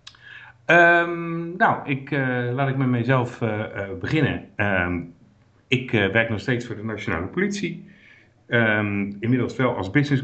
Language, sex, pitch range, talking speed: Dutch, male, 90-125 Hz, 150 wpm